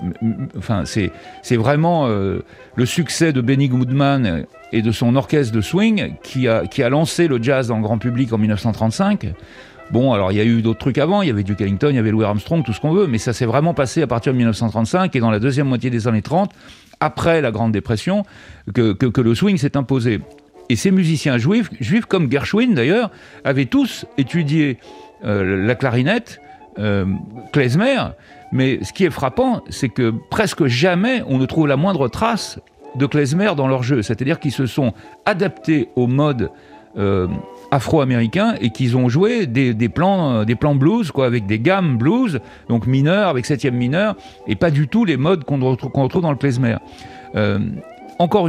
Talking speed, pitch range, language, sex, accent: 200 wpm, 115-165 Hz, French, male, French